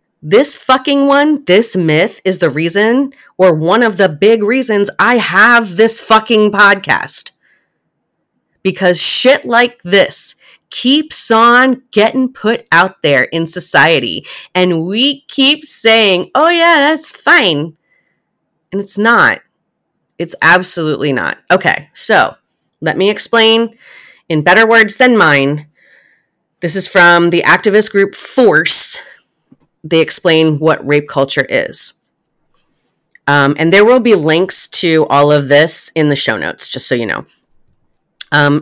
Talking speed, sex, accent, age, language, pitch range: 135 wpm, female, American, 30-49, English, 155-225 Hz